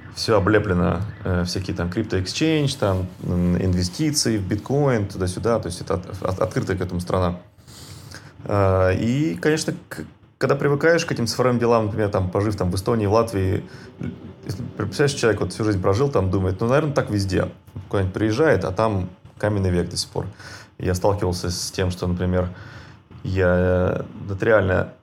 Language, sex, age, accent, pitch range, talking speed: Russian, male, 20-39, native, 95-115 Hz, 165 wpm